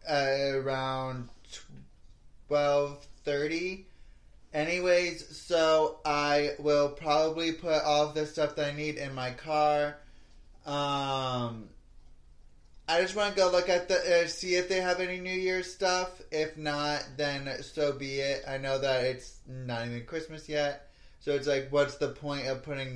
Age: 20-39